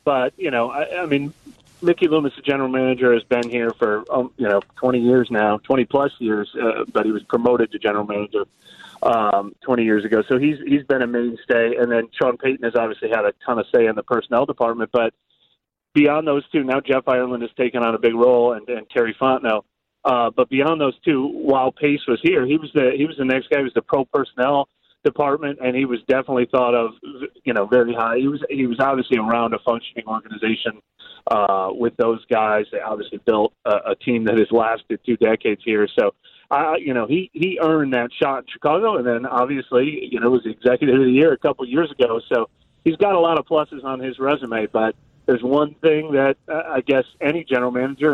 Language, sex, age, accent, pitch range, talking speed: English, male, 30-49, American, 115-145 Hz, 220 wpm